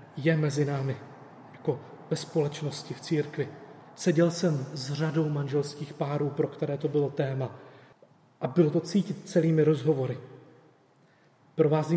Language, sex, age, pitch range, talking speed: Czech, male, 30-49, 145-175 Hz, 130 wpm